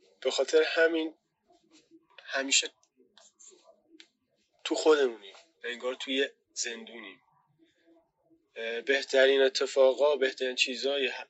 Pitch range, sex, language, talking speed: 125-140 Hz, male, Persian, 70 wpm